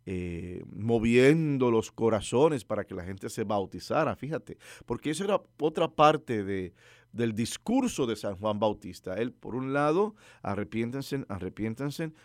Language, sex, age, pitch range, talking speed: English, male, 50-69, 105-130 Hz, 135 wpm